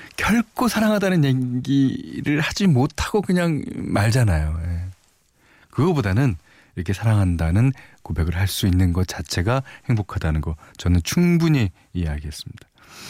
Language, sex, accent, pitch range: Korean, male, native, 95-155 Hz